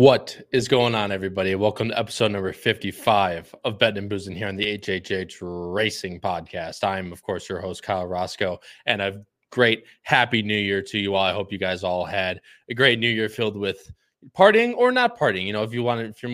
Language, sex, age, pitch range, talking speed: English, male, 20-39, 95-115 Hz, 225 wpm